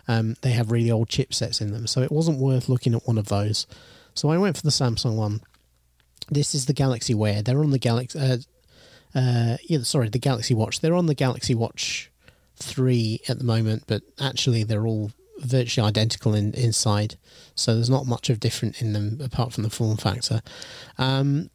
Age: 30-49